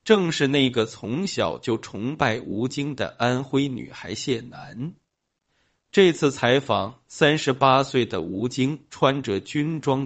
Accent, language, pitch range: native, Chinese, 115-145 Hz